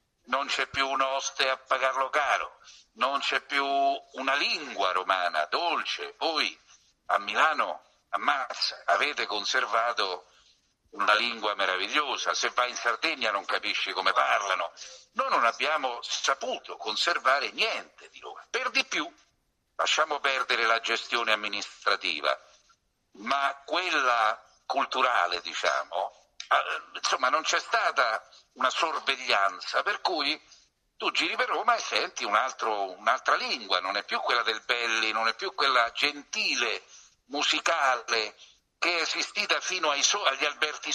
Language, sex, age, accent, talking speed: Italian, male, 50-69, native, 130 wpm